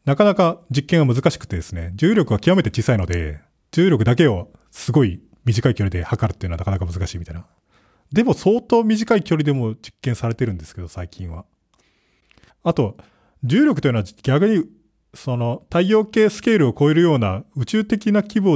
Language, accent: Japanese, native